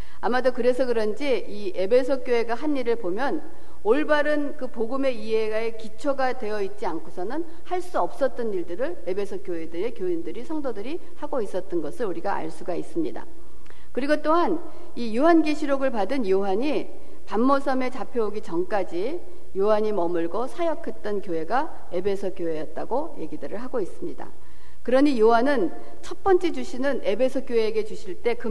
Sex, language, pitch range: female, Korean, 195-280 Hz